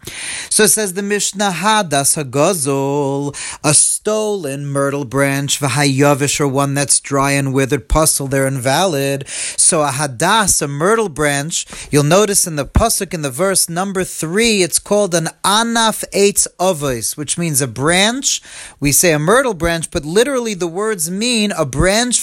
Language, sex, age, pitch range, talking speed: English, male, 40-59, 145-210 Hz, 150 wpm